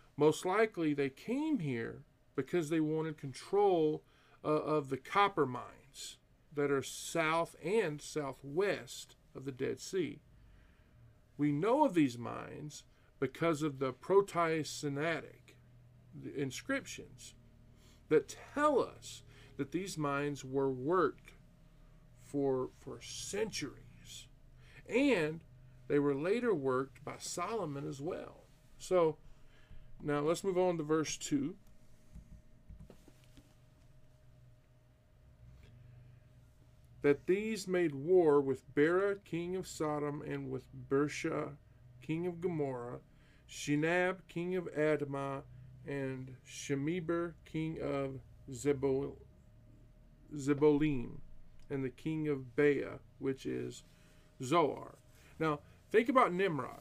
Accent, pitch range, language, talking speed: American, 125-160 Hz, English, 100 wpm